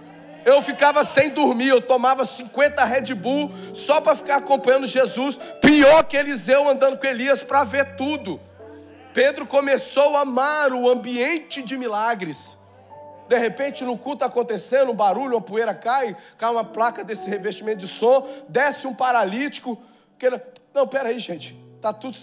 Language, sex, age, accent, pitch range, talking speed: Portuguese, male, 40-59, Brazilian, 170-260 Hz, 160 wpm